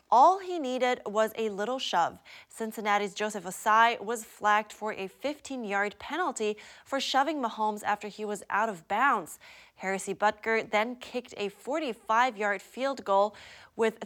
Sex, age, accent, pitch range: female, 20-39, American, 200-245 Hz